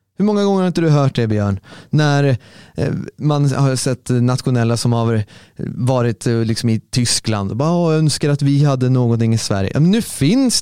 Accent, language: native, Swedish